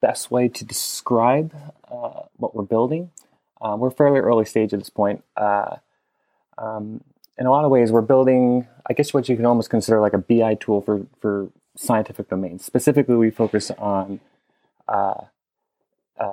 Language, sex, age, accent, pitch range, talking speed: English, male, 20-39, American, 100-120 Hz, 165 wpm